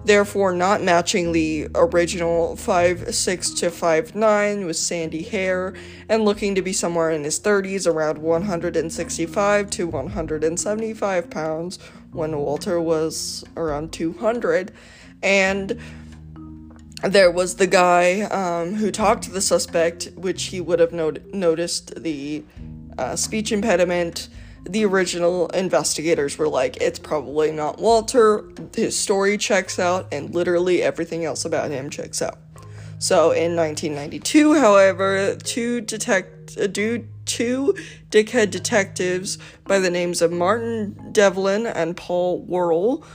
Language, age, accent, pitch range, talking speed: English, 20-39, American, 165-205 Hz, 125 wpm